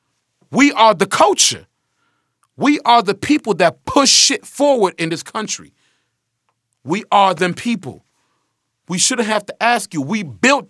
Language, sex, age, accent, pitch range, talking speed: English, male, 30-49, American, 170-245 Hz, 150 wpm